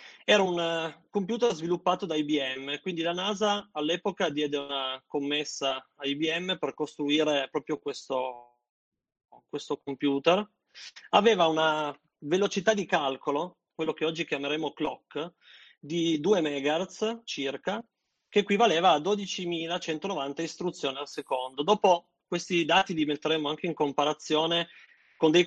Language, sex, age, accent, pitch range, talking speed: Italian, male, 30-49, native, 150-180 Hz, 125 wpm